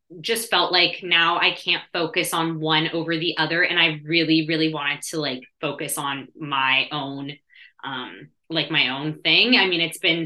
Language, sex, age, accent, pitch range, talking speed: English, female, 20-39, American, 160-195 Hz, 185 wpm